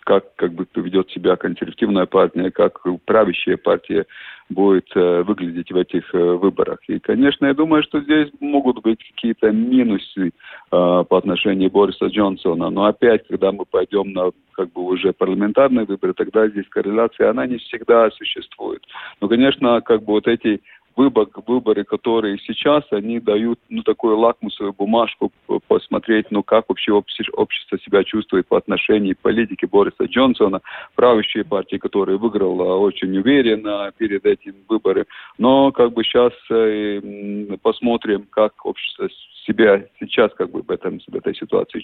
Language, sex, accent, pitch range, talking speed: Russian, male, native, 100-150 Hz, 145 wpm